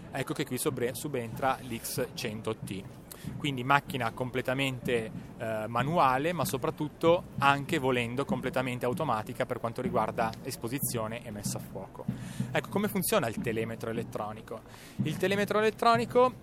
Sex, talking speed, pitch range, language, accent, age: male, 120 wpm, 130-170 Hz, Italian, native, 30-49